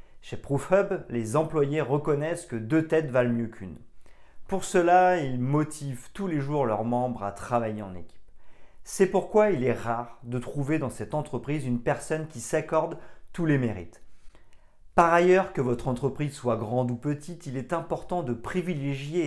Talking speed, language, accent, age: 170 wpm, French, French, 40-59